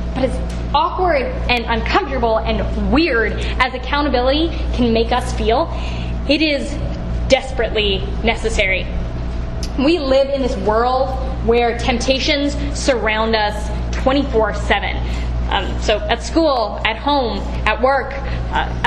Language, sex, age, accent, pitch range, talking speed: English, female, 10-29, American, 205-265 Hz, 110 wpm